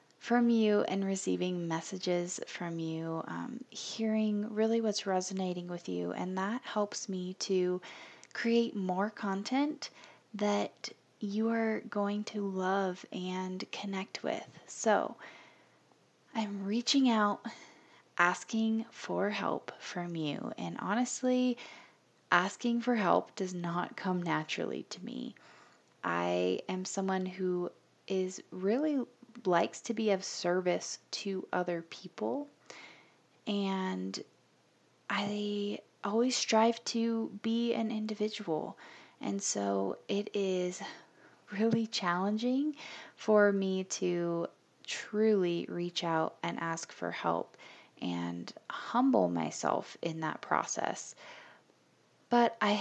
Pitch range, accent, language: 180-230 Hz, American, English